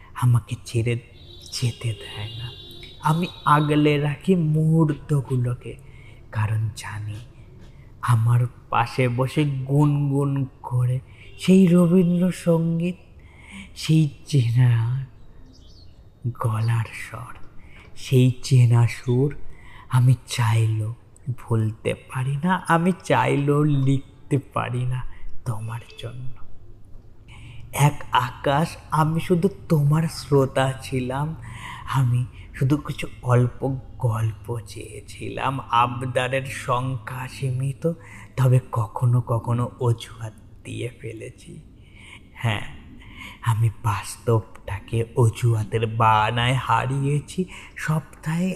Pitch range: 115-140 Hz